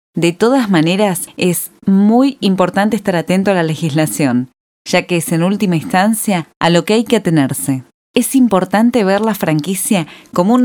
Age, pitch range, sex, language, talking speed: 20-39, 165-230 Hz, female, Spanish, 170 wpm